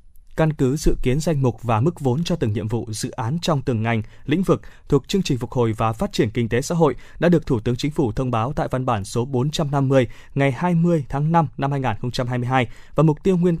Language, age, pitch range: Vietnamese, 20-39, 120-165 Hz